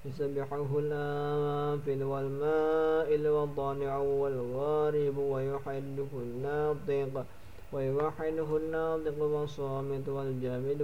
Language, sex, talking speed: Indonesian, male, 95 wpm